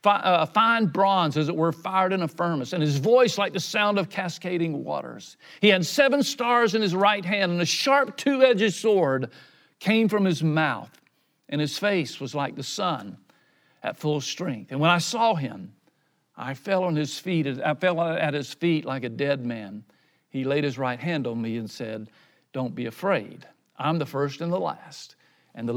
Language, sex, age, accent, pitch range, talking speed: English, male, 50-69, American, 135-185 Hz, 200 wpm